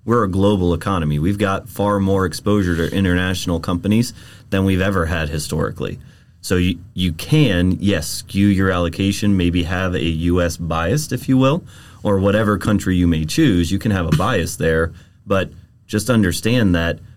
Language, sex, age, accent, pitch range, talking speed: English, male, 30-49, American, 85-100 Hz, 170 wpm